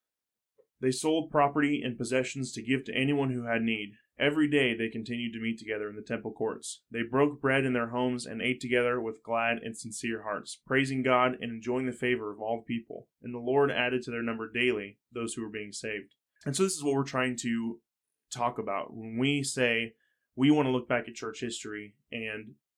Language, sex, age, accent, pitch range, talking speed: English, male, 20-39, American, 110-130 Hz, 215 wpm